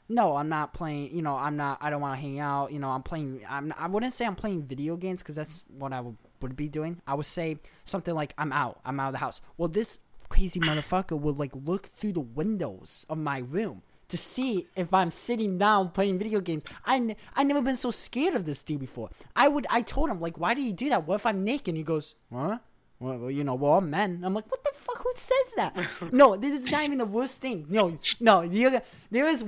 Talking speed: 255 wpm